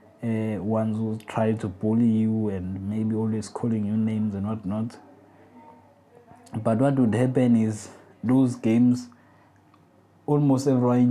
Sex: male